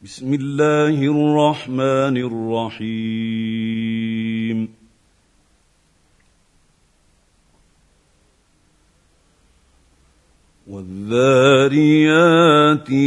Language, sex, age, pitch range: Arabic, male, 50-69, 115-150 Hz